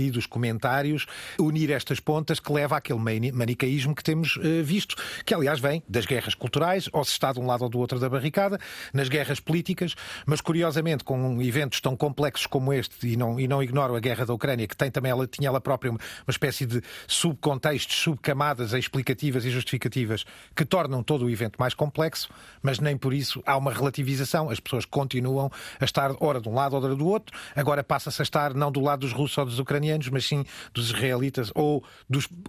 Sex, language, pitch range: male, Portuguese, 130-155 Hz